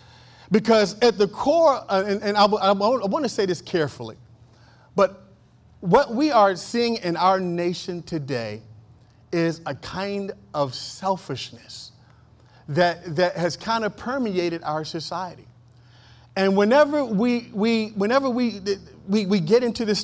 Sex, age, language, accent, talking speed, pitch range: male, 40-59, English, American, 145 wpm, 160-235 Hz